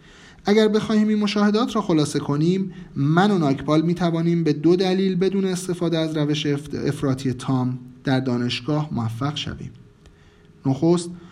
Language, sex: Persian, male